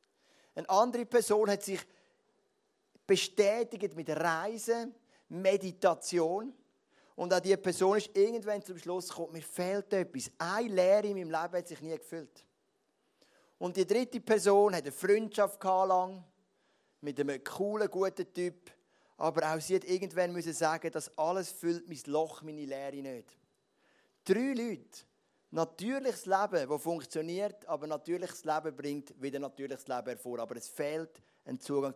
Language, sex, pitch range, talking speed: German, male, 155-215 Hz, 145 wpm